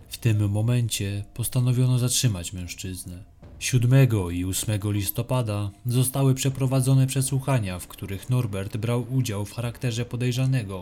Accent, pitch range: native, 95-125 Hz